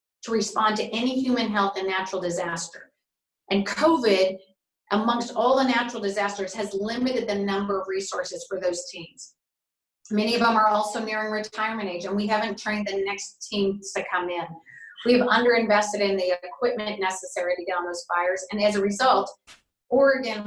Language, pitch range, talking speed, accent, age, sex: English, 195-235 Hz, 175 wpm, American, 30-49, female